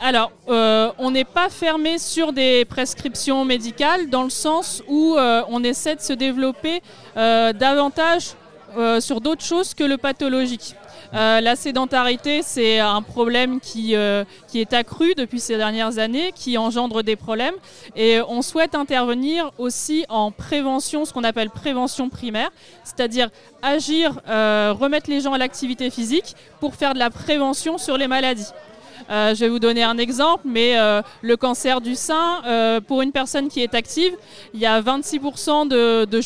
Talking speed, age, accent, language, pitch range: 170 wpm, 20-39, French, French, 230-285 Hz